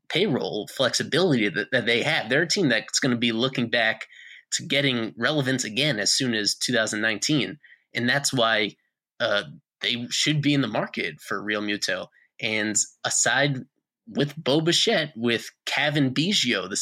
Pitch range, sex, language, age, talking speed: 115-140 Hz, male, English, 20-39, 160 wpm